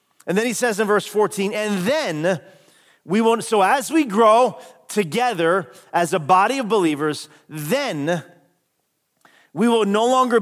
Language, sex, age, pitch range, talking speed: English, male, 40-59, 165-215 Hz, 150 wpm